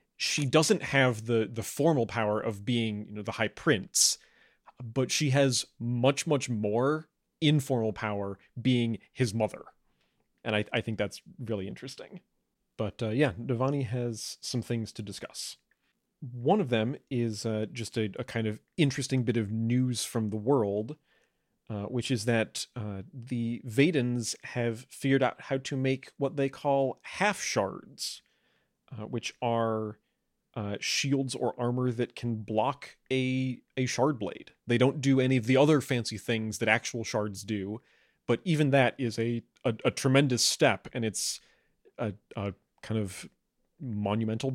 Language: English